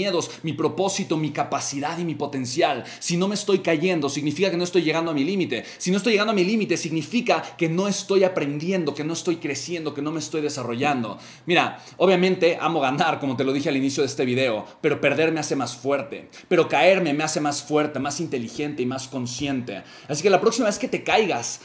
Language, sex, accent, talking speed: Spanish, male, Mexican, 220 wpm